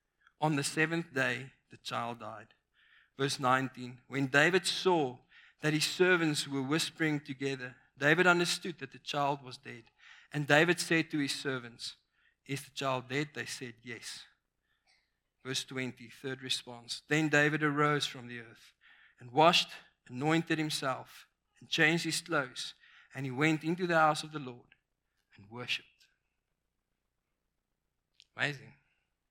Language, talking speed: English, 140 wpm